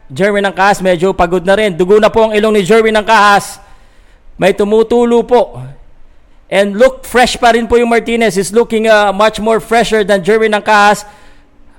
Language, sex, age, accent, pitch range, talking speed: Filipino, male, 50-69, native, 185-250 Hz, 175 wpm